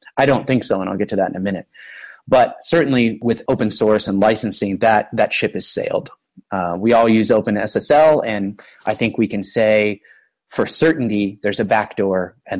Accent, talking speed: American, 195 wpm